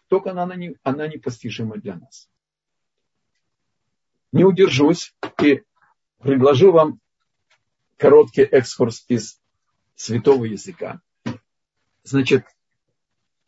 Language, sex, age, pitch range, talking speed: Russian, male, 50-69, 125-190 Hz, 85 wpm